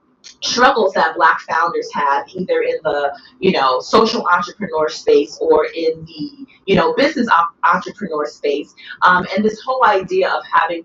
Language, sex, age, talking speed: English, female, 30-49, 160 wpm